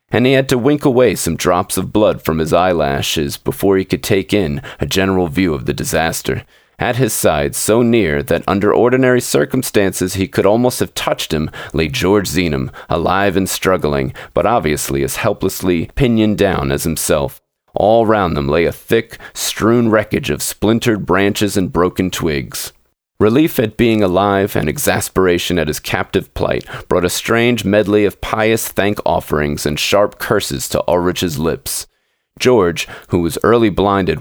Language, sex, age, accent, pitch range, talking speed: English, male, 40-59, American, 80-110 Hz, 165 wpm